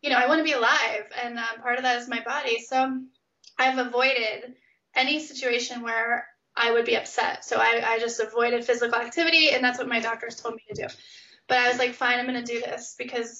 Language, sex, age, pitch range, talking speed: English, female, 10-29, 235-260 Hz, 235 wpm